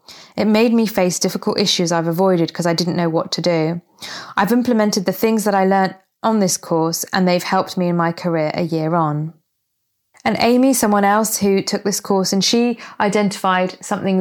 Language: English